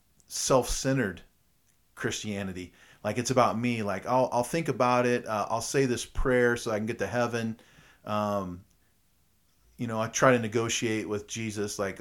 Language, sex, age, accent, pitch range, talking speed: English, male, 40-59, American, 95-115 Hz, 165 wpm